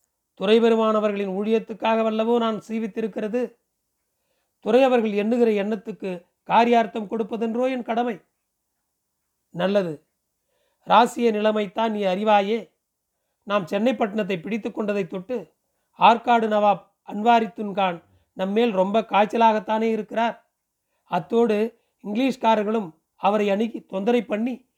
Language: Tamil